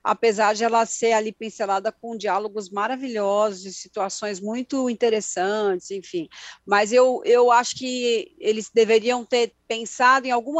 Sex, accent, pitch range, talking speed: female, Brazilian, 205-250 Hz, 135 wpm